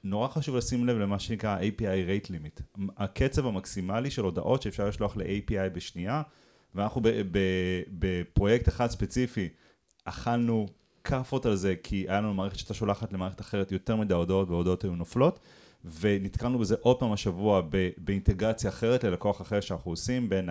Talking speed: 160 wpm